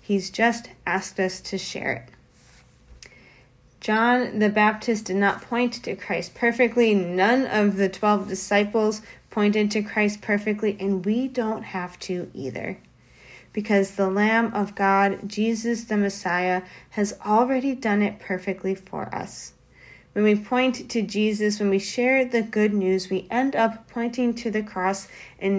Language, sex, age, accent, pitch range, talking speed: English, female, 30-49, American, 195-225 Hz, 150 wpm